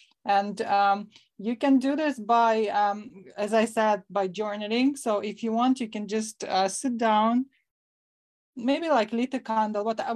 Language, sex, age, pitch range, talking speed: English, female, 20-39, 195-235 Hz, 175 wpm